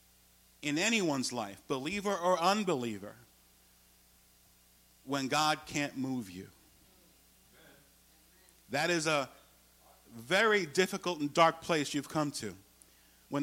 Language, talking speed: English, 105 wpm